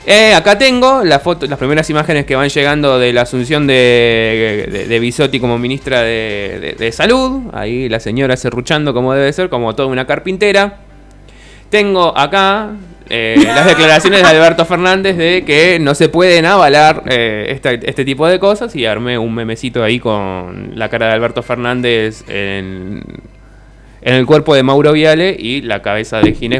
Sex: male